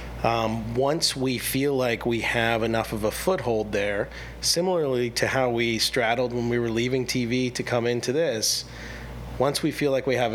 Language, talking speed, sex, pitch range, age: English, 185 wpm, male, 105-130 Hz, 30-49